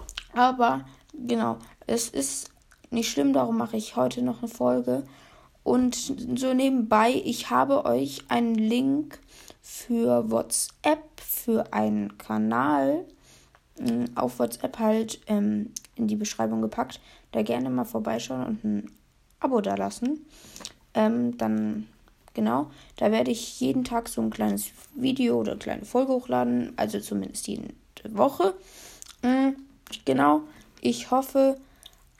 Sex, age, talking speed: female, 20-39, 125 wpm